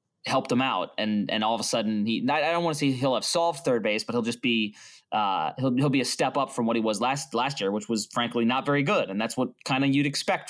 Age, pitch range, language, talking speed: 20-39, 115-155 Hz, English, 290 wpm